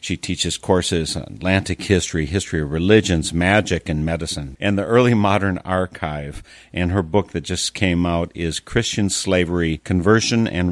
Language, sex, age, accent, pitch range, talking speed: English, male, 50-69, American, 80-100 Hz, 160 wpm